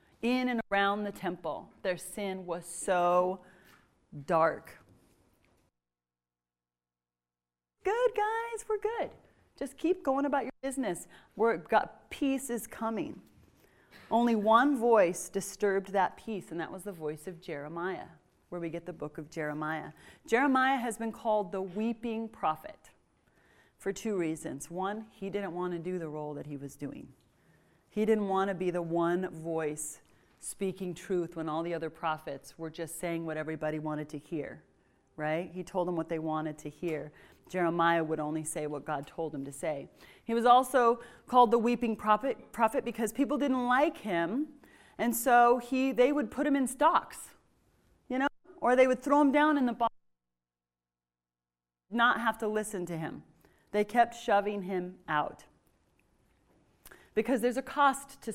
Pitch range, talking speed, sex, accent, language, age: 160-240 Hz, 165 wpm, female, American, English, 30-49